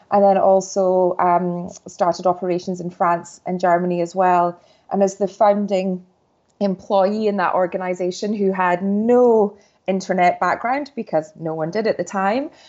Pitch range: 180-205 Hz